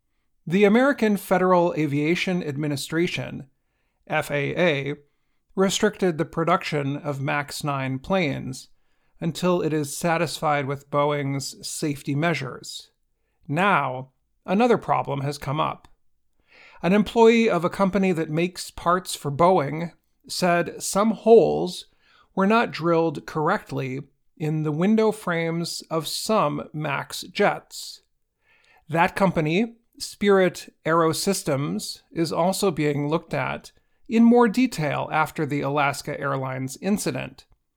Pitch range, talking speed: 145-190 Hz, 110 wpm